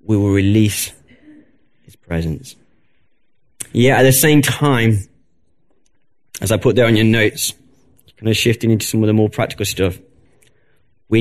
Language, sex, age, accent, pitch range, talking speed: English, male, 30-49, British, 100-125 Hz, 150 wpm